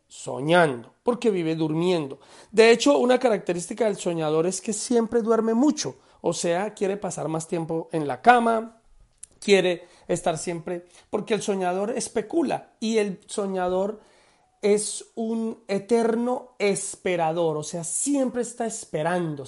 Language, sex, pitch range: Spanish, male, 175-225 Hz